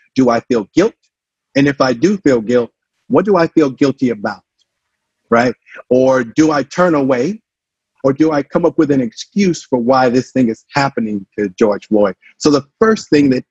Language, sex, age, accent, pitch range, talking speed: English, male, 50-69, American, 120-150 Hz, 195 wpm